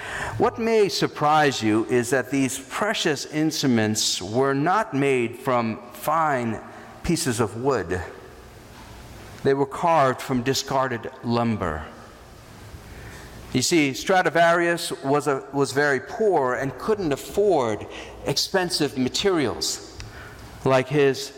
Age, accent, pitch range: 50-69, American, 120-165 Hz